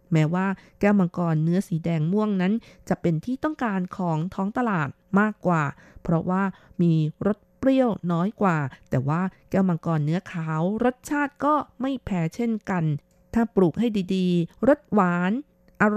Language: Thai